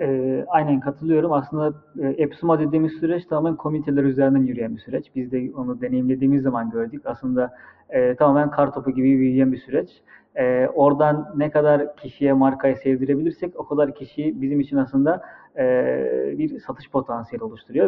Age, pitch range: 30-49, 135-175 Hz